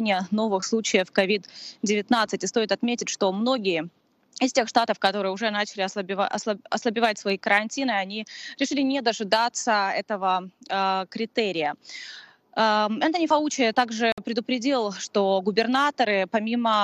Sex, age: female, 20-39